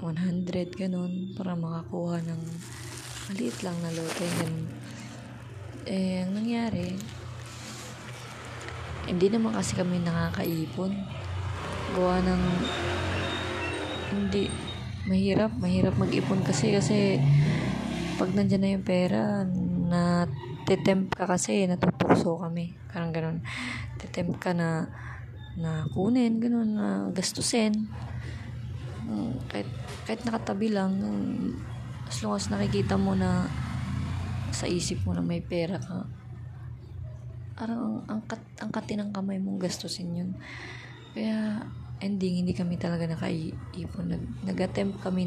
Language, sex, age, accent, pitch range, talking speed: Filipino, female, 20-39, native, 115-180 Hz, 105 wpm